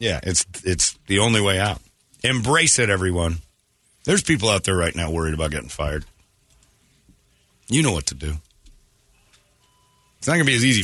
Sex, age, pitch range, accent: male, 40-59, 80-120 Hz, American